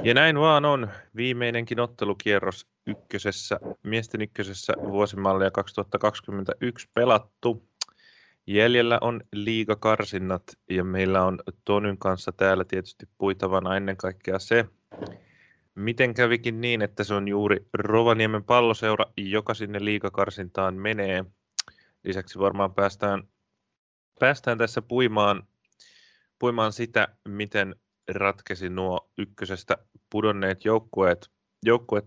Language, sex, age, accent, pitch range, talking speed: Finnish, male, 20-39, native, 95-110 Hz, 100 wpm